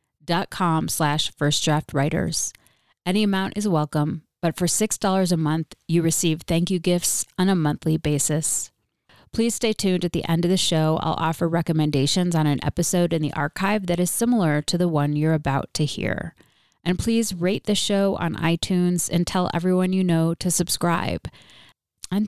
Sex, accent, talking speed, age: female, American, 185 wpm, 30-49